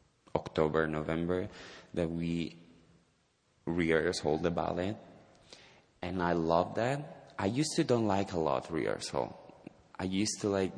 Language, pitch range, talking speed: English, 80-95 Hz, 130 wpm